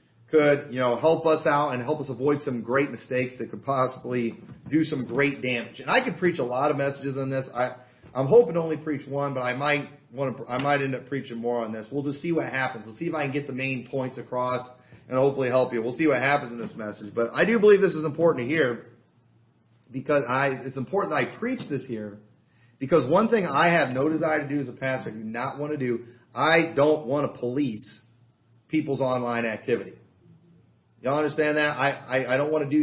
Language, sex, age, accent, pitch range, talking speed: English, male, 40-59, American, 120-160 Hz, 240 wpm